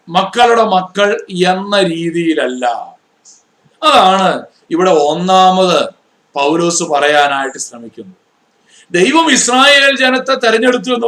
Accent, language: native, Malayalam